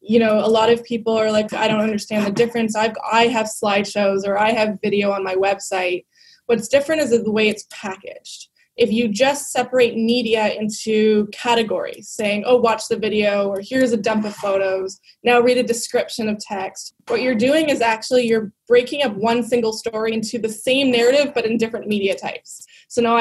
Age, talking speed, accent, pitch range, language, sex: 20-39, 195 wpm, American, 215-245 Hz, English, female